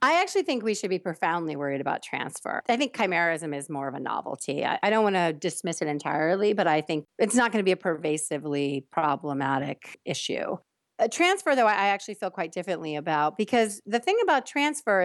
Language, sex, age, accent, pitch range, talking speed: English, female, 40-59, American, 155-195 Hz, 200 wpm